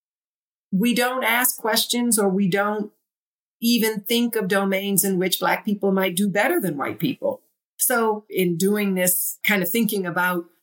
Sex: female